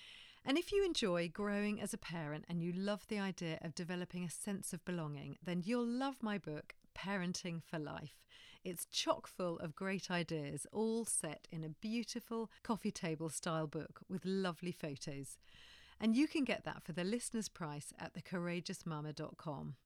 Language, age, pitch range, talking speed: English, 40-59, 160-215 Hz, 170 wpm